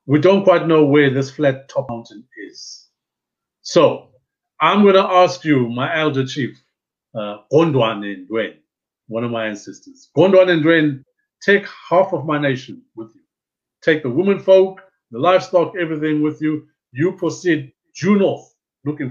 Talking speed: 155 wpm